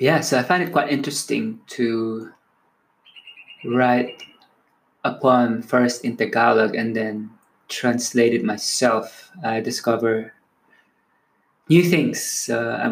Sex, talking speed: male, 115 wpm